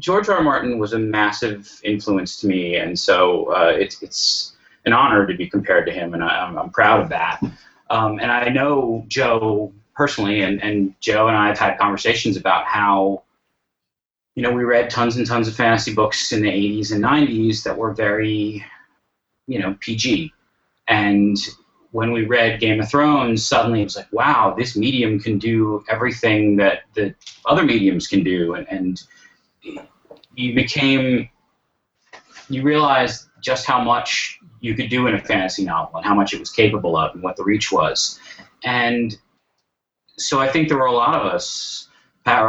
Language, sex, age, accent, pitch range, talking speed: English, male, 30-49, American, 105-125 Hz, 180 wpm